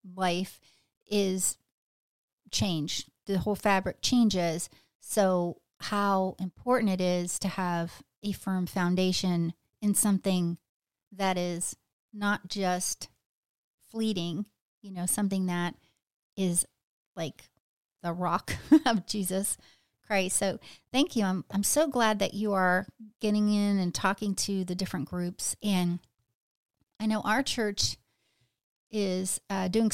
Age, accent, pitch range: 40-59, American, 185-210 Hz